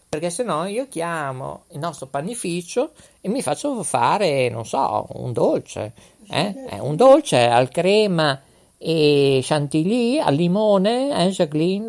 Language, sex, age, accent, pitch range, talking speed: Italian, male, 50-69, native, 140-205 Hz, 135 wpm